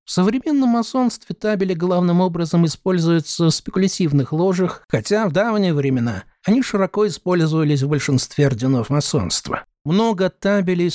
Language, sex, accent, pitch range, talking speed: Russian, male, native, 140-180 Hz, 125 wpm